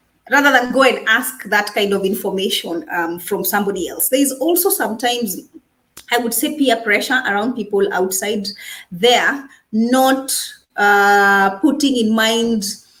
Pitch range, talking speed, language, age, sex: 195-245 Hz, 145 wpm, English, 30-49, female